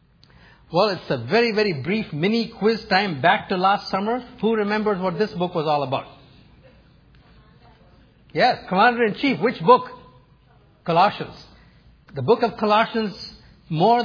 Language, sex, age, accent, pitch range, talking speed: English, male, 50-69, Indian, 155-210 Hz, 130 wpm